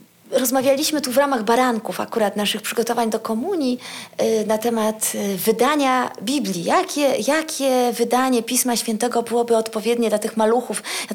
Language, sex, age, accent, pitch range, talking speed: Polish, female, 30-49, native, 230-295 Hz, 135 wpm